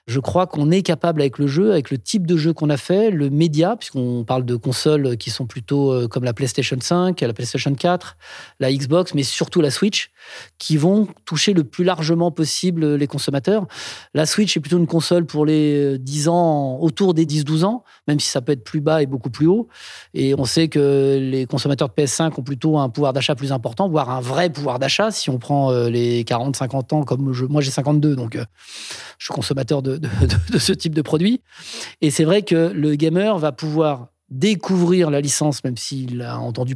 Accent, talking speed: French, 210 wpm